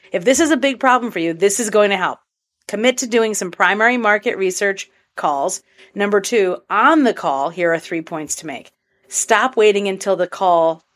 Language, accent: English, American